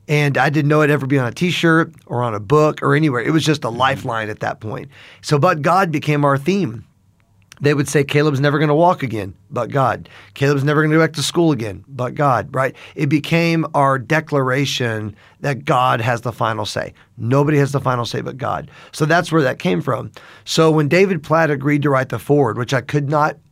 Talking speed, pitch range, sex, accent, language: 225 wpm, 125-155 Hz, male, American, English